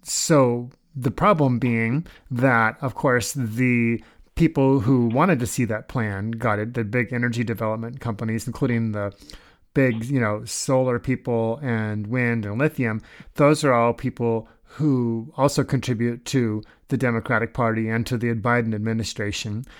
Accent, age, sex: American, 30-49, male